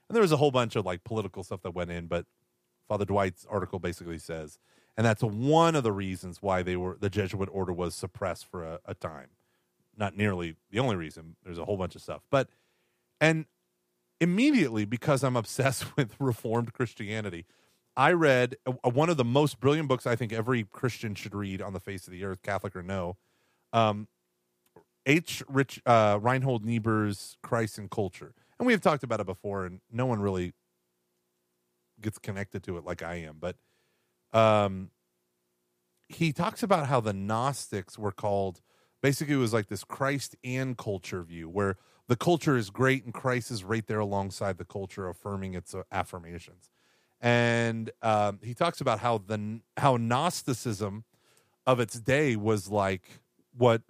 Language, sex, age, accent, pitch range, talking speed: English, male, 30-49, American, 90-125 Hz, 175 wpm